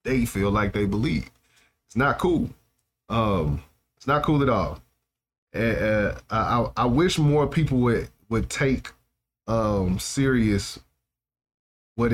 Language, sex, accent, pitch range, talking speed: English, male, American, 95-120 Hz, 140 wpm